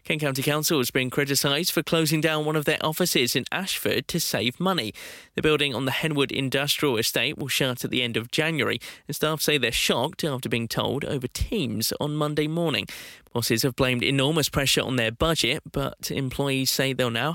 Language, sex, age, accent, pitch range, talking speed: English, male, 20-39, British, 130-155 Hz, 200 wpm